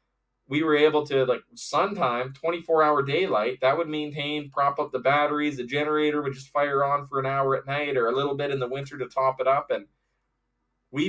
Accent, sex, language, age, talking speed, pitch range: American, male, English, 20-39, 220 wpm, 125-150 Hz